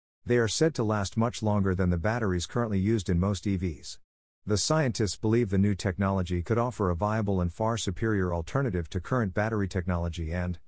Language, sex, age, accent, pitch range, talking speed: English, male, 50-69, American, 90-110 Hz, 190 wpm